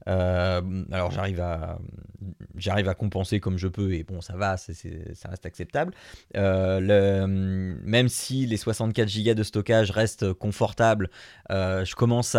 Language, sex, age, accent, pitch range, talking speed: French, male, 30-49, French, 95-125 Hz, 155 wpm